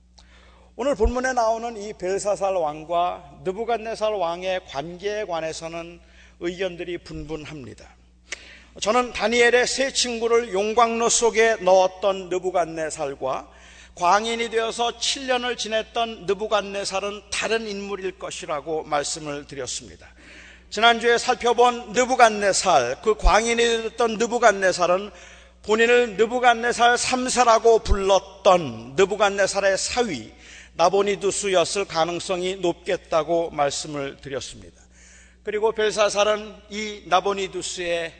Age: 40-59